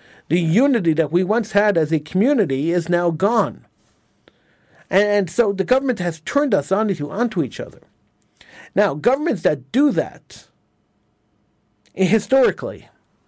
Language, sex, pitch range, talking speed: English, male, 150-190 Hz, 130 wpm